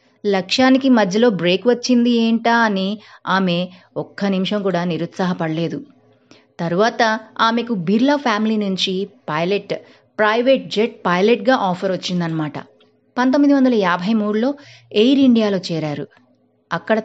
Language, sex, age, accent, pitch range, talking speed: Telugu, female, 30-49, native, 170-210 Hz, 105 wpm